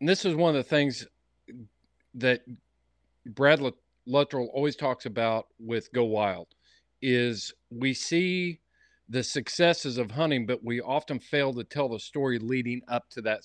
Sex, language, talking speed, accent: male, English, 155 wpm, American